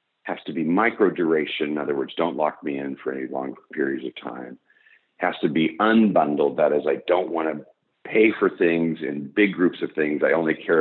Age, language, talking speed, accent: 50-69, English, 220 wpm, American